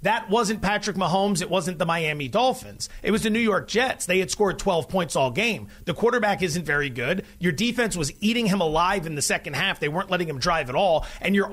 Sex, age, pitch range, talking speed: male, 30-49, 175-225 Hz, 240 wpm